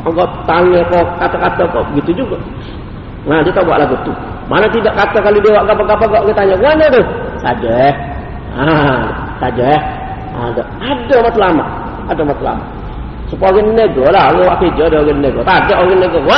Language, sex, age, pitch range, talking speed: Malay, male, 40-59, 190-275 Hz, 185 wpm